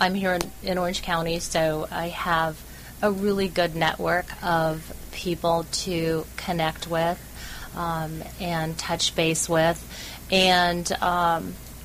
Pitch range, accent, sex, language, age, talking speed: 160-180 Hz, American, female, English, 30-49, 120 wpm